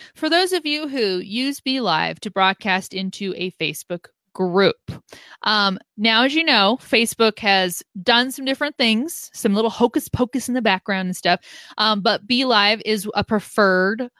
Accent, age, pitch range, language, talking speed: American, 20-39, 190-245 Hz, English, 175 wpm